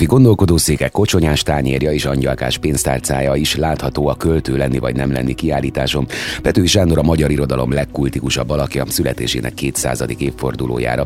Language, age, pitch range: Hungarian, 30-49, 65-80 Hz